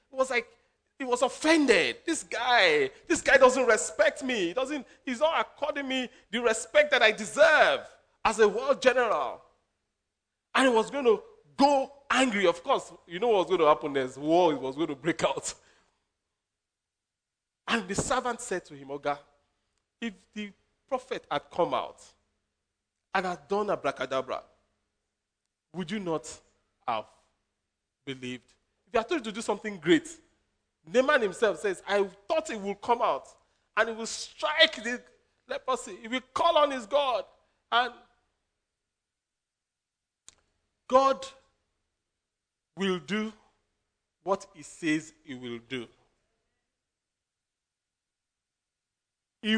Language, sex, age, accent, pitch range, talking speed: English, male, 40-59, Nigerian, 180-275 Hz, 140 wpm